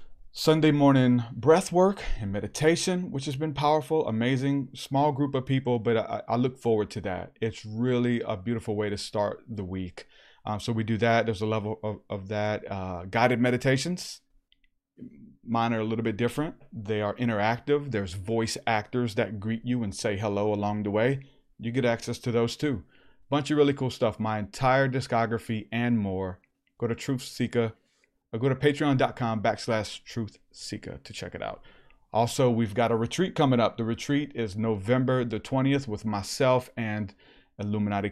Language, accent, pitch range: English, American, 110-130 Hz